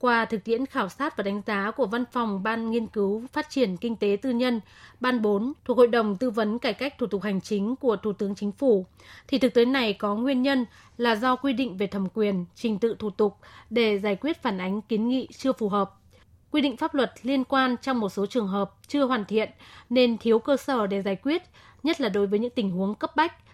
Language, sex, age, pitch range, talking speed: Vietnamese, female, 20-39, 205-255 Hz, 245 wpm